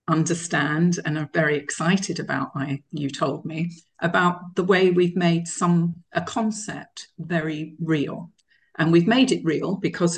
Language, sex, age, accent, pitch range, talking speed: English, female, 50-69, British, 150-175 Hz, 155 wpm